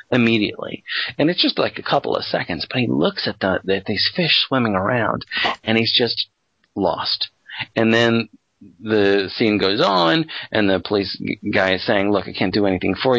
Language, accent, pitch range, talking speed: English, American, 95-110 Hz, 185 wpm